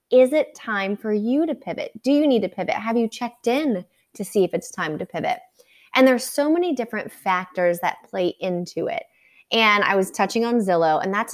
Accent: American